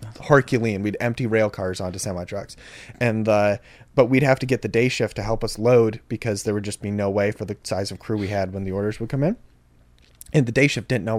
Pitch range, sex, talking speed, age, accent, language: 110-155 Hz, male, 260 wpm, 20-39, American, English